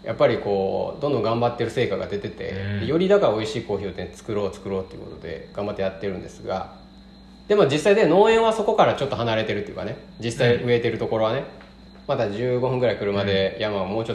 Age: 20-39